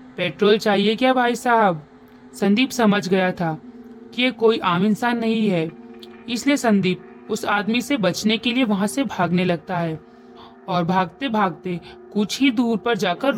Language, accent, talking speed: Hindi, native, 165 wpm